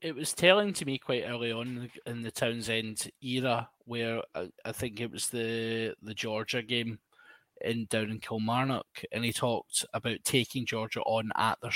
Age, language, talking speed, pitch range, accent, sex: 20-39, English, 175 wpm, 125-155 Hz, British, male